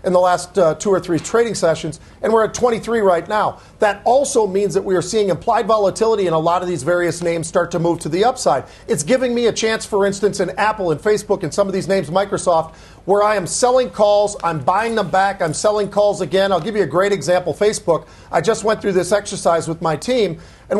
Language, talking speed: English, 240 wpm